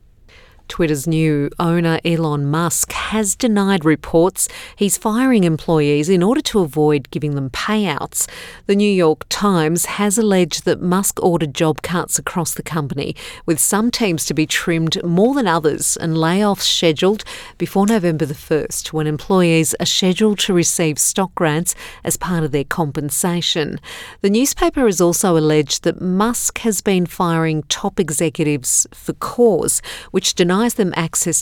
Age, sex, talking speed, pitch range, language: 50-69, female, 150 wpm, 155-200 Hz, English